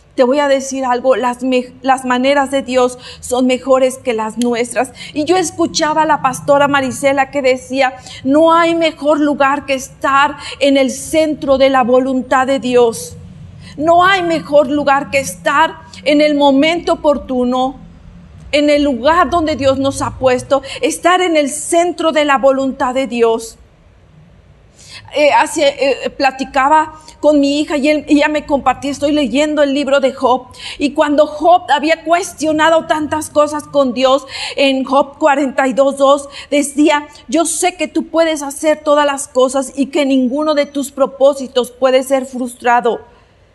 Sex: female